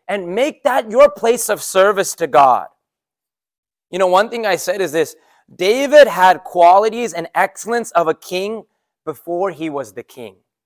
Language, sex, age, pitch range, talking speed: English, male, 30-49, 175-245 Hz, 170 wpm